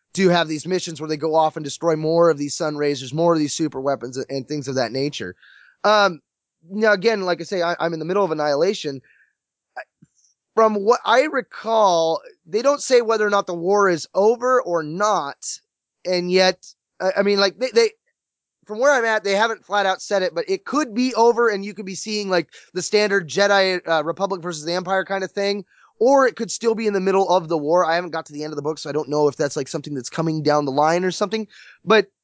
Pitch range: 160-210 Hz